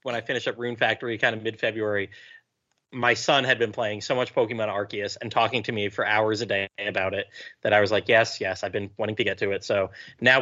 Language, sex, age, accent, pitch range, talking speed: English, male, 30-49, American, 100-120 Hz, 250 wpm